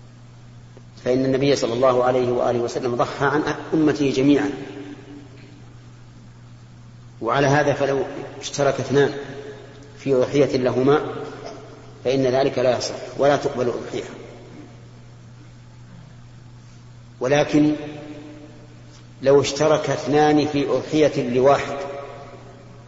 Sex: male